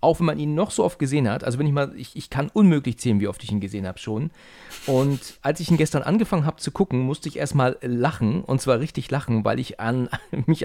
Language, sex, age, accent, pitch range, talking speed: German, male, 40-59, German, 115-150 Hz, 260 wpm